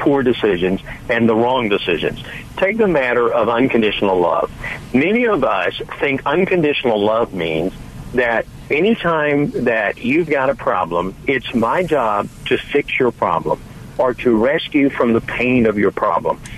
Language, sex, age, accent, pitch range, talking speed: English, male, 50-69, American, 115-150 Hz, 150 wpm